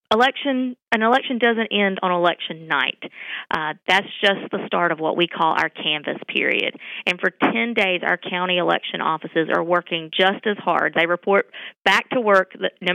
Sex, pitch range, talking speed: female, 170-205 Hz, 180 wpm